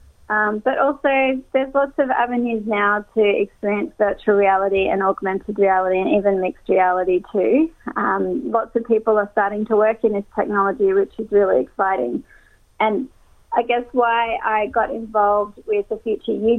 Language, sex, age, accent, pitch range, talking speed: English, female, 30-49, Australian, 200-230 Hz, 165 wpm